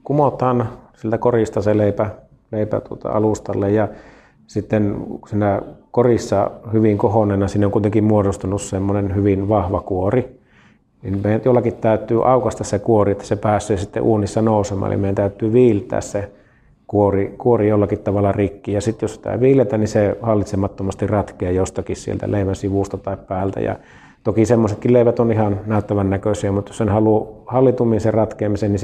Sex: male